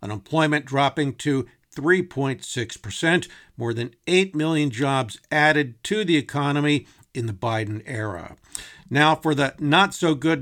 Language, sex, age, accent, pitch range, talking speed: English, male, 50-69, American, 120-155 Hz, 120 wpm